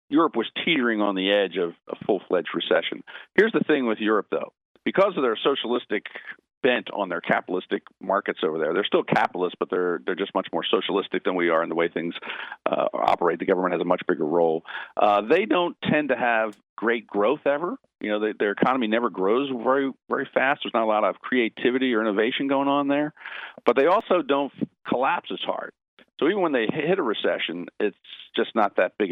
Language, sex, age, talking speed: English, male, 50-69, 210 wpm